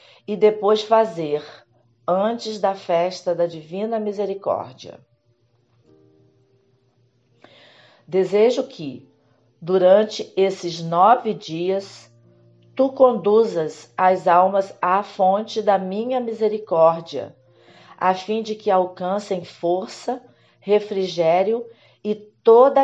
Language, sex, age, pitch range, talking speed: Portuguese, female, 40-59, 155-215 Hz, 85 wpm